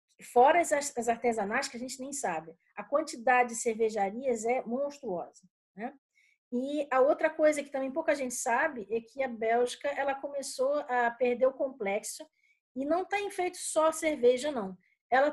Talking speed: 165 wpm